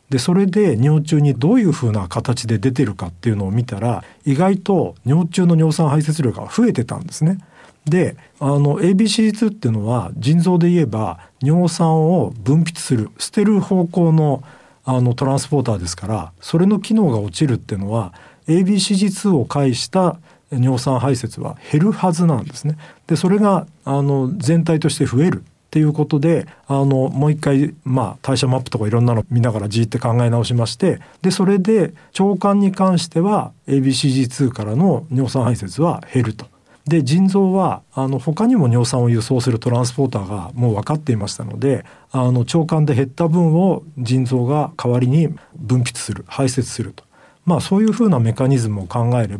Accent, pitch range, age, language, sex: native, 120-170 Hz, 50-69, Japanese, male